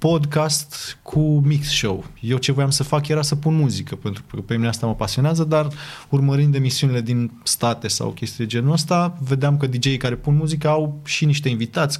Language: Romanian